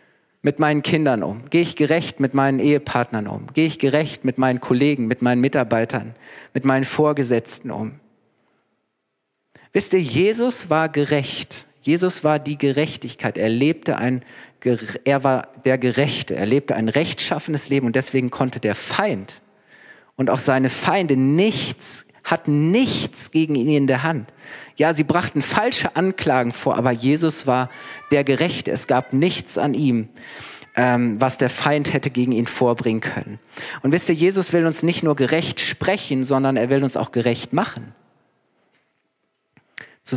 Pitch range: 130-165 Hz